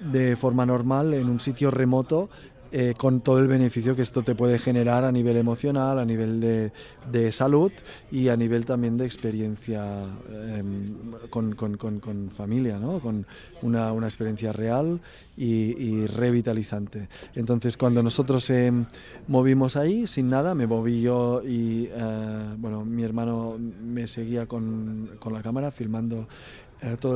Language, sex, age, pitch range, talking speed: Spanish, male, 20-39, 115-135 Hz, 155 wpm